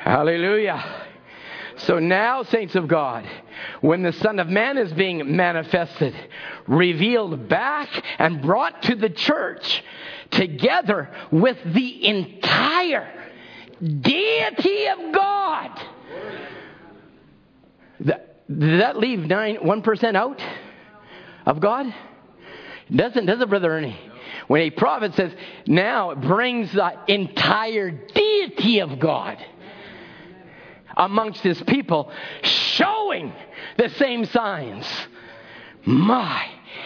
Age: 50-69